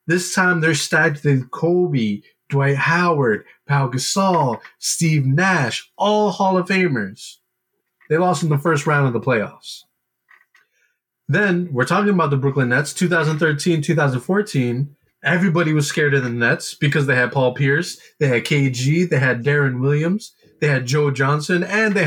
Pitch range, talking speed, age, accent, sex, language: 125-165 Hz, 155 wpm, 20-39, American, male, English